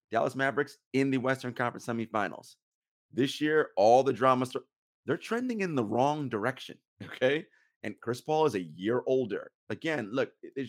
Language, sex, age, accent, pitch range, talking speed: English, male, 30-49, American, 100-130 Hz, 165 wpm